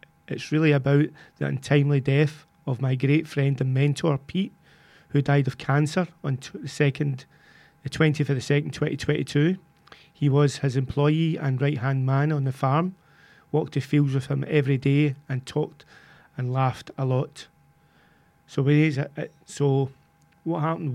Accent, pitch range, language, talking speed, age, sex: British, 135-155 Hz, English, 160 wpm, 40-59, male